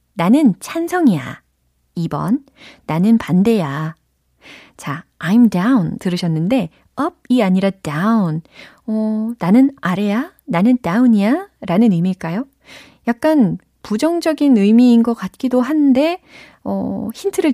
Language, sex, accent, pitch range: Korean, female, native, 165-260 Hz